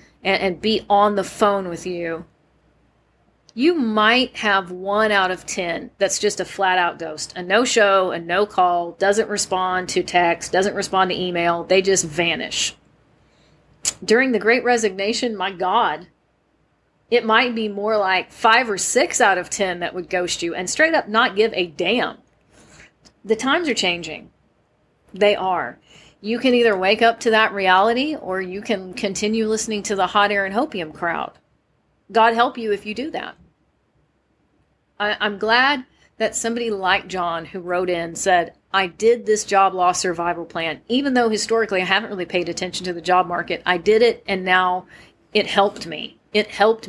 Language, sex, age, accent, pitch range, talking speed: English, female, 40-59, American, 180-220 Hz, 175 wpm